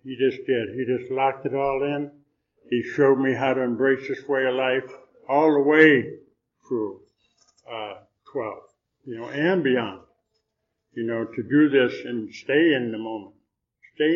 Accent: American